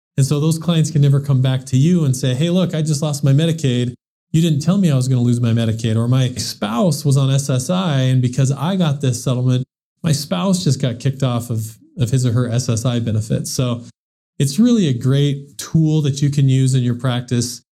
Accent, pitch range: American, 125-150 Hz